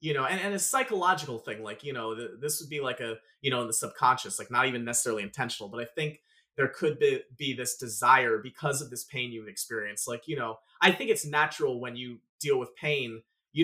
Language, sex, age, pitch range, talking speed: English, male, 30-49, 120-185 Hz, 240 wpm